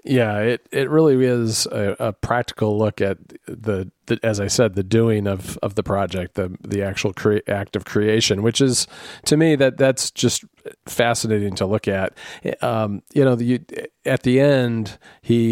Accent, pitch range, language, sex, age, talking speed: American, 105-125 Hz, English, male, 40-59, 185 wpm